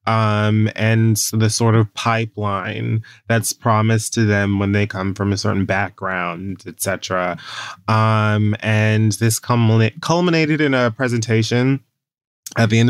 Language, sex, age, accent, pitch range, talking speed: English, male, 20-39, American, 100-120 Hz, 135 wpm